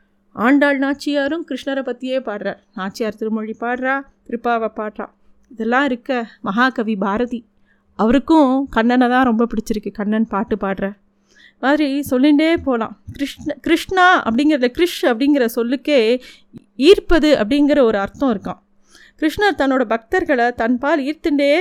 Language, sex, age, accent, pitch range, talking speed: Tamil, female, 30-49, native, 230-295 Hz, 115 wpm